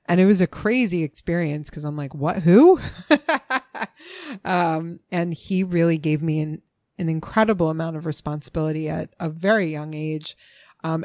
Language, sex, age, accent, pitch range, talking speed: English, female, 30-49, American, 155-180 Hz, 160 wpm